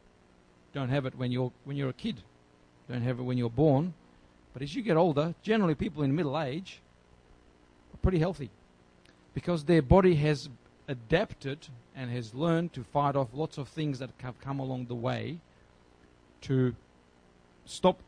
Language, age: English, 40-59